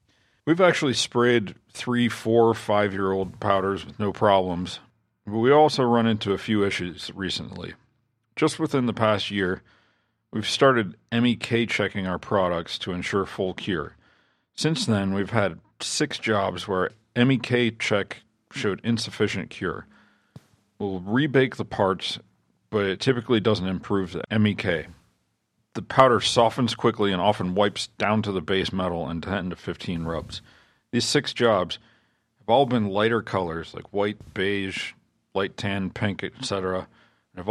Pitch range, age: 95-115 Hz, 40-59